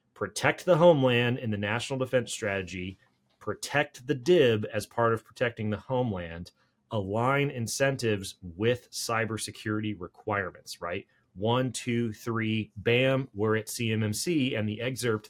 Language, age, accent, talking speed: English, 30-49, American, 130 wpm